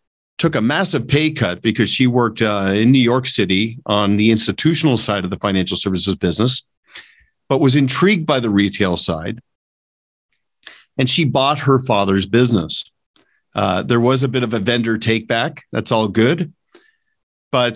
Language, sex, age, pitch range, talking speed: English, male, 50-69, 115-155 Hz, 165 wpm